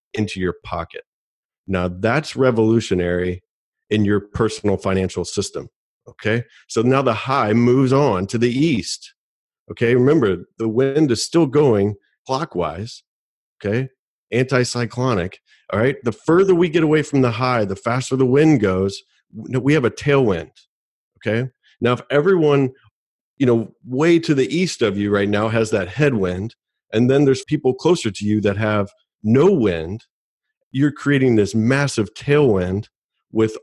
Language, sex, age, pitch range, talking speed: English, male, 40-59, 105-145 Hz, 150 wpm